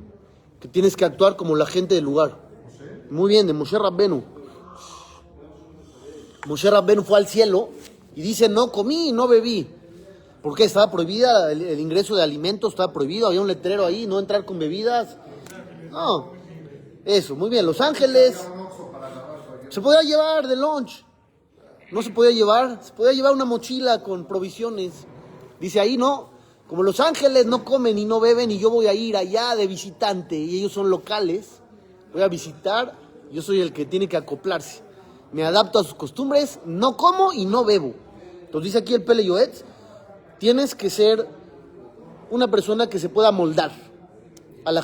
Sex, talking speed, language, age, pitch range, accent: male, 165 wpm, Spanish, 30-49, 175-230 Hz, Mexican